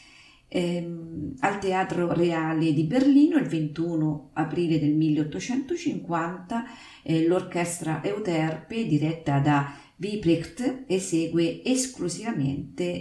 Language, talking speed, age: Italian, 90 wpm, 40-59